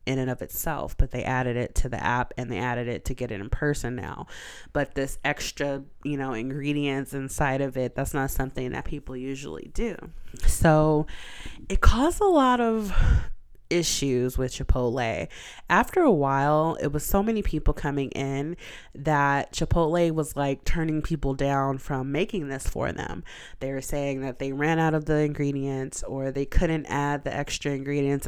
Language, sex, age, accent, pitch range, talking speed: English, female, 20-39, American, 135-155 Hz, 180 wpm